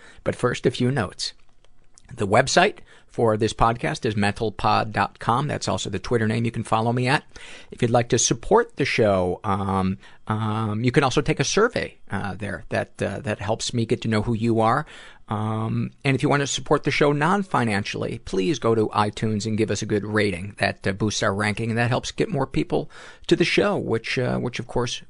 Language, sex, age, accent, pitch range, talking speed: English, male, 50-69, American, 105-125 Hz, 215 wpm